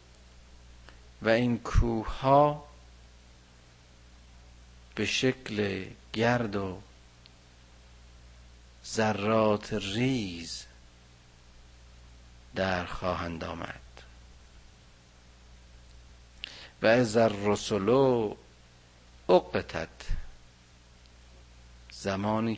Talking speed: 45 wpm